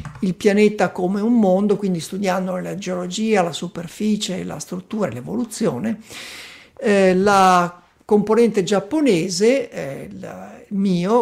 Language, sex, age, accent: Italian, male, 50-69, native